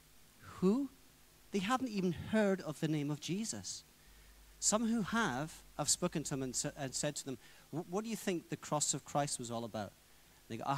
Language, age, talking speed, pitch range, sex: English, 40-59, 195 wpm, 100-130 Hz, male